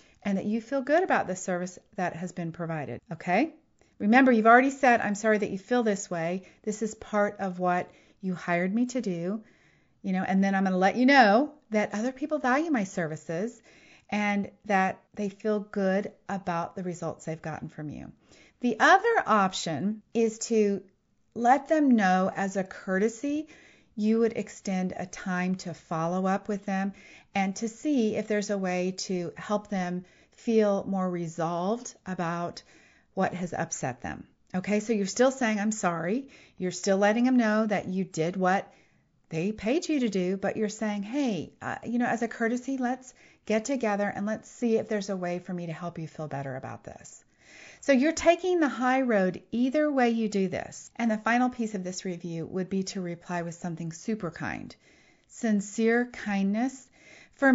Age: 40-59